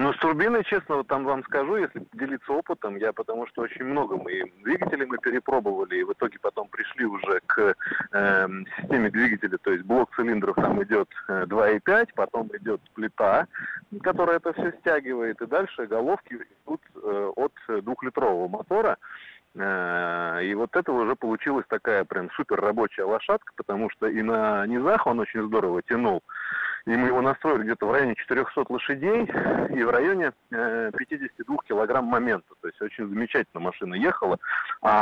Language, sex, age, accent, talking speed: Russian, male, 30-49, native, 160 wpm